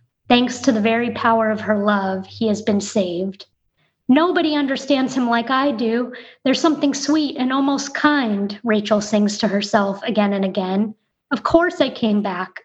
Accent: American